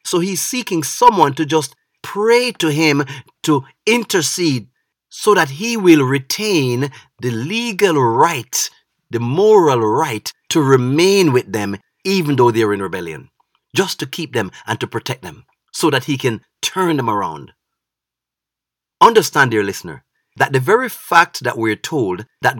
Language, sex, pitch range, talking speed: English, male, 130-195 Hz, 150 wpm